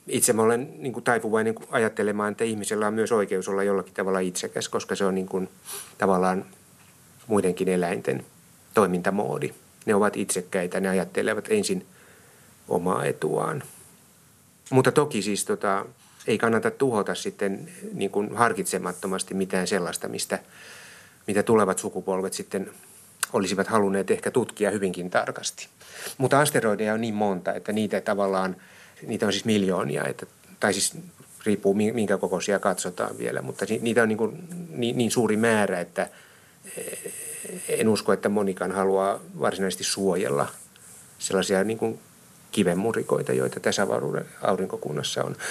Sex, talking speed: male, 125 wpm